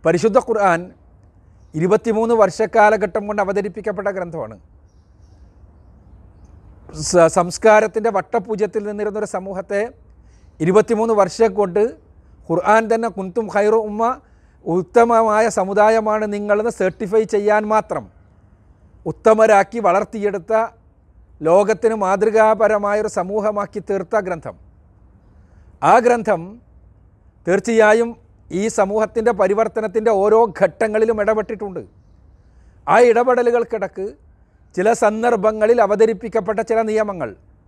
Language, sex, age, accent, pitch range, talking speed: Malayalam, male, 40-59, native, 140-220 Hz, 75 wpm